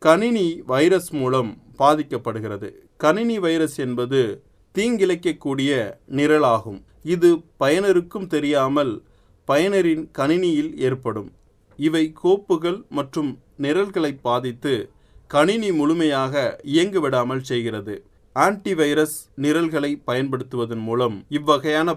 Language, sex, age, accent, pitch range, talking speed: Tamil, male, 30-49, native, 125-160 Hz, 80 wpm